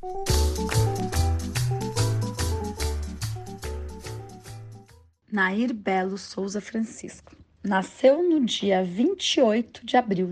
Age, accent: 30-49, Brazilian